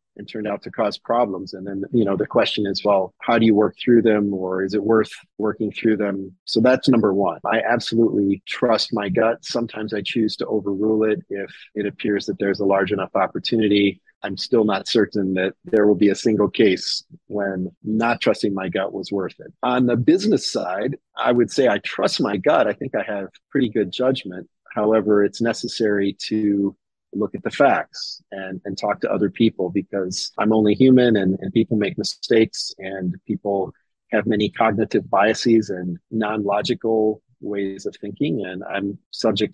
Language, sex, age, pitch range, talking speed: English, male, 30-49, 100-110 Hz, 190 wpm